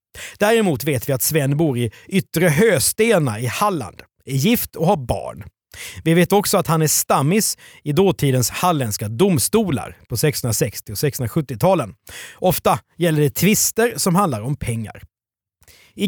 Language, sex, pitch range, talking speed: Swedish, male, 120-180 Hz, 150 wpm